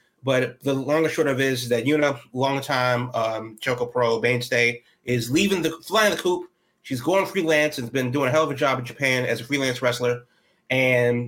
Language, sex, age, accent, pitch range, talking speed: English, male, 30-49, American, 125-150 Hz, 220 wpm